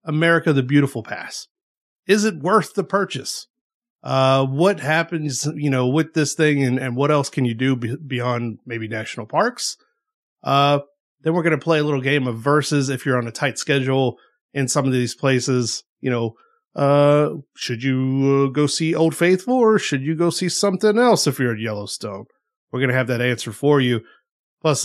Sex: male